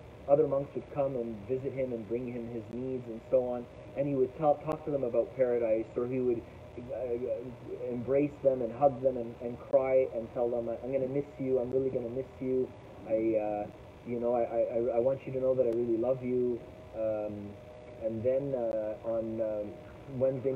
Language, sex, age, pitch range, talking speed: English, male, 30-49, 115-140 Hz, 200 wpm